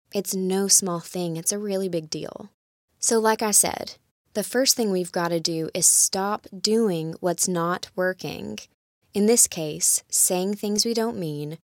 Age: 20-39